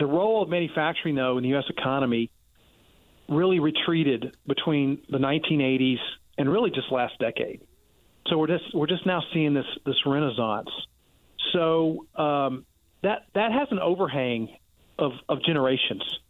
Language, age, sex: English, 40-59, male